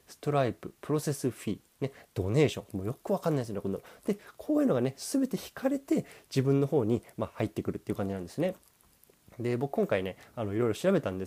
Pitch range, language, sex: 100-140 Hz, Japanese, male